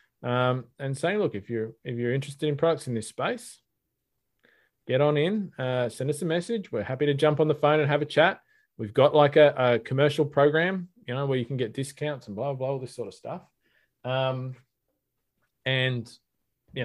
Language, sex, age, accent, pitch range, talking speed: English, male, 20-39, Australian, 125-150 Hz, 205 wpm